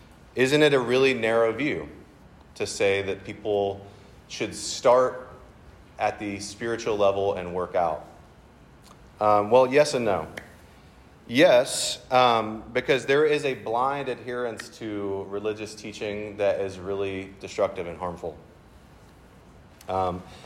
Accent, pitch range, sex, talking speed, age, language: American, 100-120 Hz, male, 125 wpm, 30-49, English